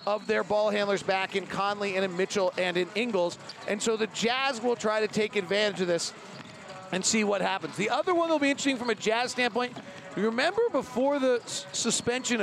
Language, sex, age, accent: English, male, 40-59, American